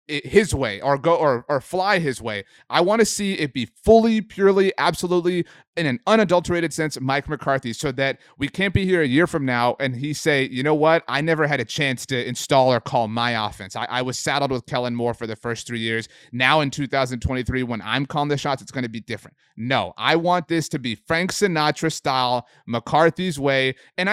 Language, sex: English, male